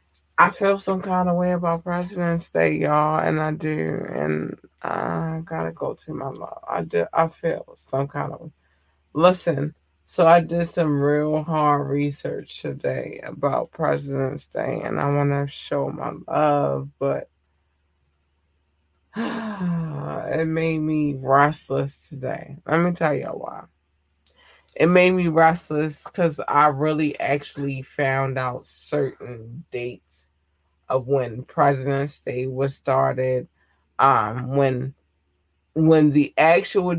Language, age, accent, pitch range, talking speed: English, 20-39, American, 125-160 Hz, 130 wpm